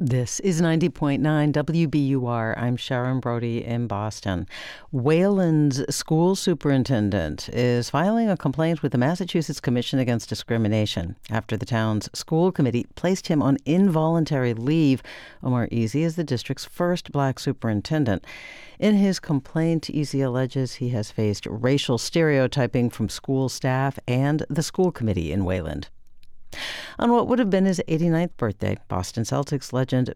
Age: 60-79